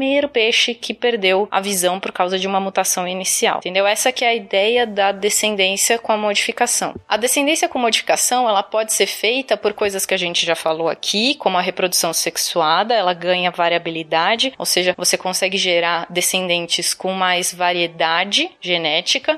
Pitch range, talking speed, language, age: 185-235 Hz, 170 wpm, Portuguese, 20-39